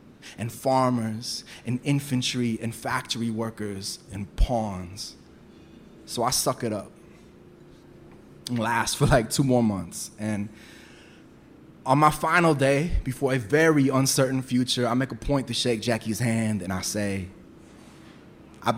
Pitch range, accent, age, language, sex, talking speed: 100-140 Hz, American, 20-39, English, male, 135 wpm